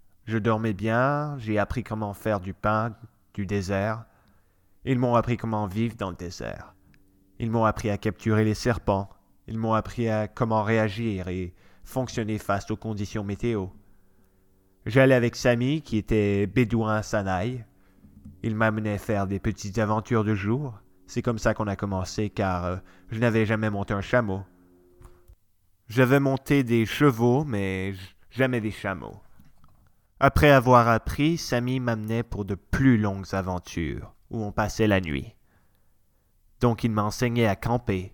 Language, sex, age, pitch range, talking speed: French, male, 20-39, 100-120 Hz, 150 wpm